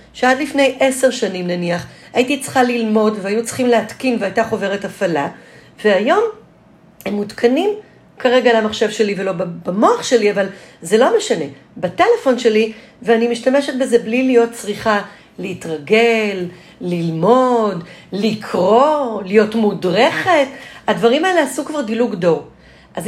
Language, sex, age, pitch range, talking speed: Hebrew, female, 40-59, 200-255 Hz, 120 wpm